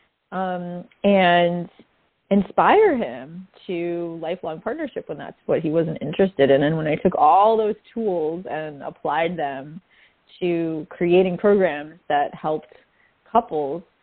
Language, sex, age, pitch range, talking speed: English, female, 30-49, 155-195 Hz, 130 wpm